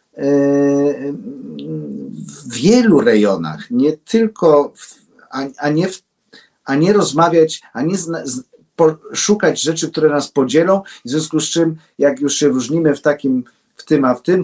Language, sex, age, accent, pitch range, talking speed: Polish, male, 50-69, native, 125-175 Hz, 160 wpm